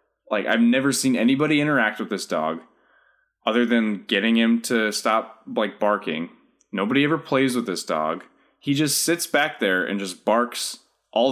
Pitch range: 110-145 Hz